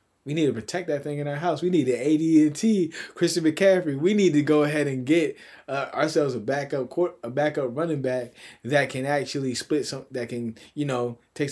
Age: 20-39